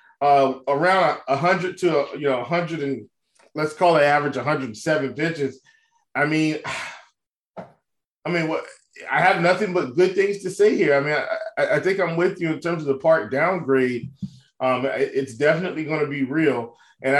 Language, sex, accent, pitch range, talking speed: English, male, American, 135-170 Hz, 175 wpm